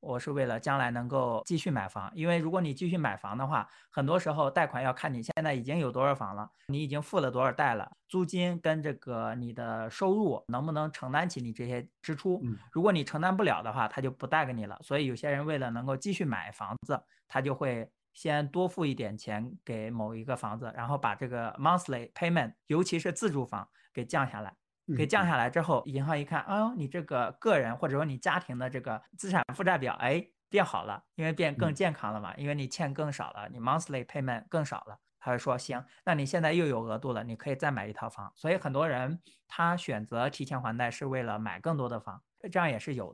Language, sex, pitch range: Chinese, male, 120-165 Hz